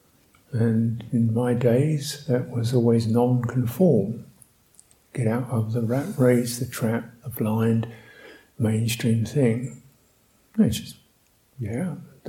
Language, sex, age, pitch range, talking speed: English, male, 60-79, 120-150 Hz, 110 wpm